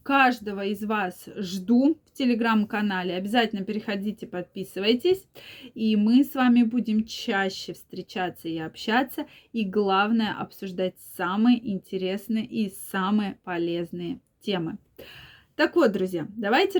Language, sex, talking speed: Russian, female, 110 wpm